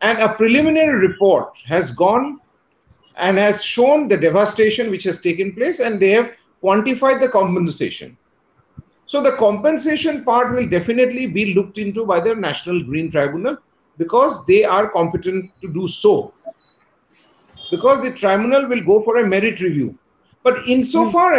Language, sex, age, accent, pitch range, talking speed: English, male, 40-59, Indian, 195-265 Hz, 150 wpm